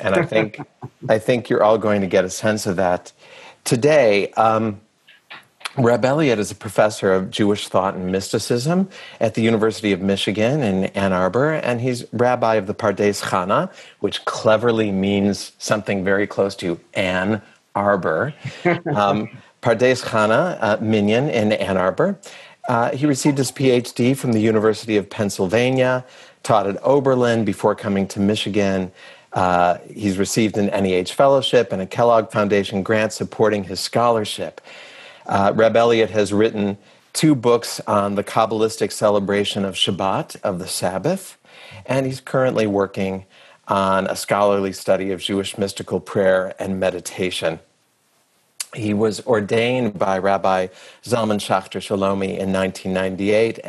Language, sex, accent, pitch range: English, male, American, 95-115 Hz